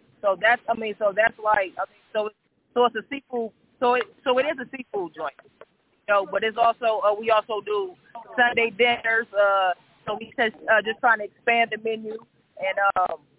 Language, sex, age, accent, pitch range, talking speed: English, female, 20-39, American, 200-245 Hz, 205 wpm